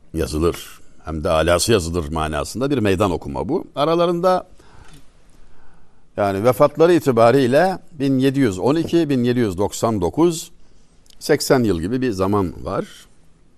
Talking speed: 95 wpm